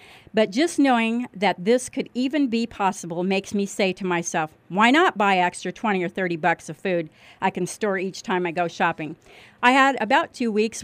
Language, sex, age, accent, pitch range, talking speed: English, female, 40-59, American, 180-255 Hz, 205 wpm